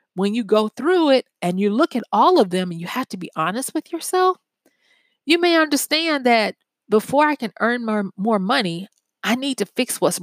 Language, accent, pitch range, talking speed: English, American, 190-255 Hz, 210 wpm